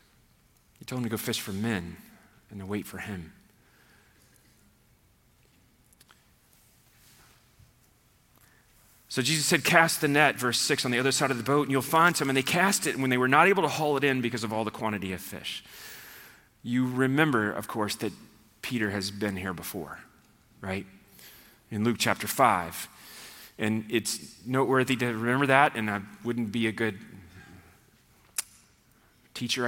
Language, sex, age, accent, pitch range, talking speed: English, male, 30-49, American, 105-135 Hz, 160 wpm